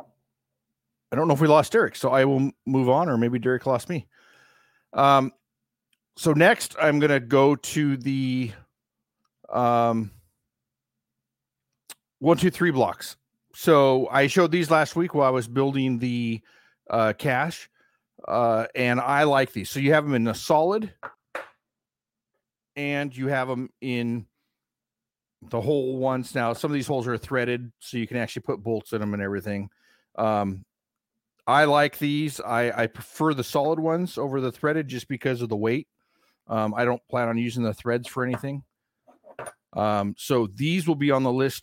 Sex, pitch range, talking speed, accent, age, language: male, 115-145 Hz, 170 wpm, American, 50-69, English